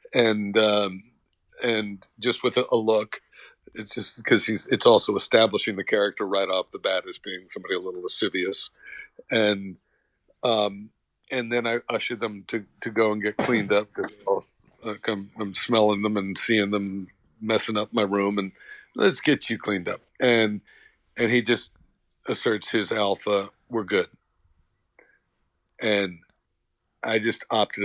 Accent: American